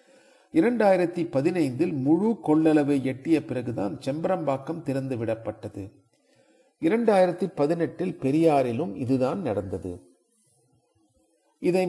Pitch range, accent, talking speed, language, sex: 130-170 Hz, native, 50 wpm, Tamil, male